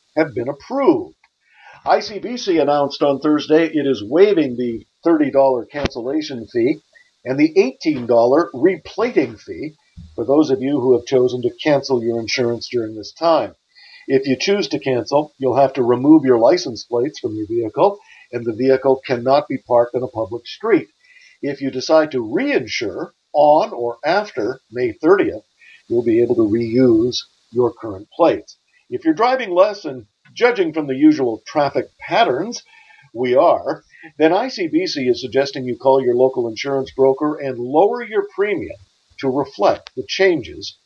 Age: 50-69